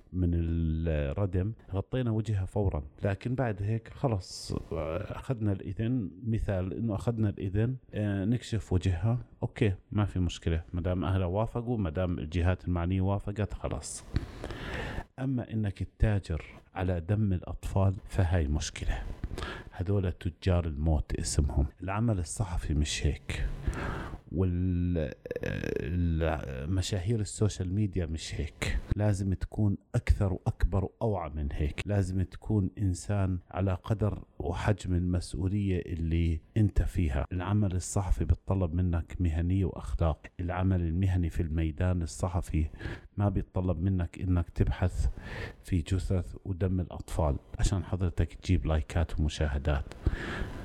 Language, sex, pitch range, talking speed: Arabic, male, 85-100 Hz, 110 wpm